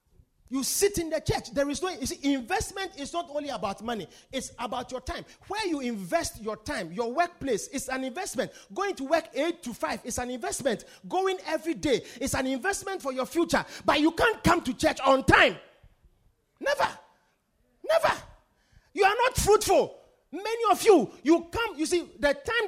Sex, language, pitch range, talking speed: male, English, 240-345 Hz, 190 wpm